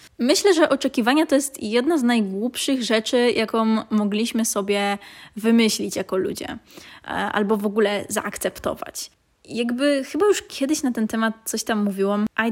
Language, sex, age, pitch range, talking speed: Polish, female, 20-39, 210-255 Hz, 145 wpm